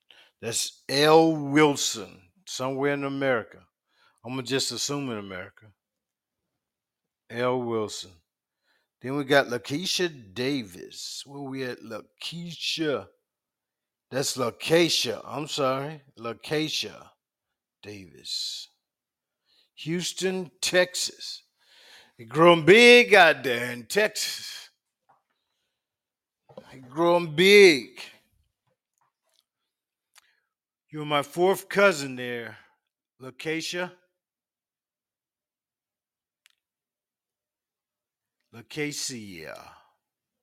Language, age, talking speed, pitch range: English, 50-69, 70 wpm, 120-160 Hz